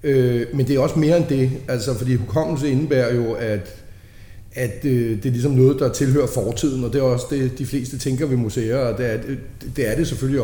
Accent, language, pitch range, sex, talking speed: native, Danish, 120-140 Hz, male, 220 wpm